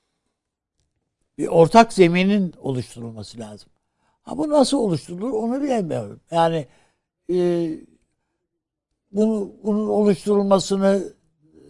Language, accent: Turkish, native